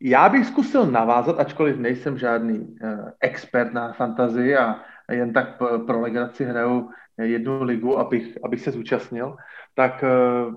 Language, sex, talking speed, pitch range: Slovak, male, 140 wpm, 125-175 Hz